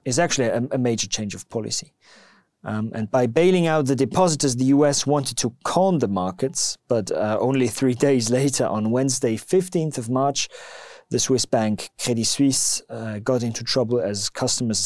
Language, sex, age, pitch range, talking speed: English, male, 30-49, 110-135 Hz, 180 wpm